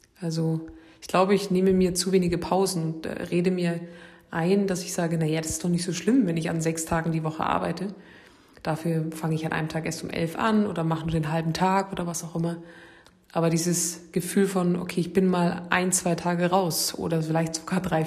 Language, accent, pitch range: German, German, 165-185 Hz